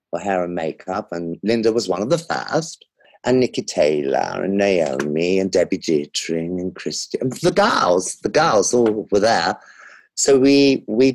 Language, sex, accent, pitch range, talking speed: English, male, British, 100-145 Hz, 165 wpm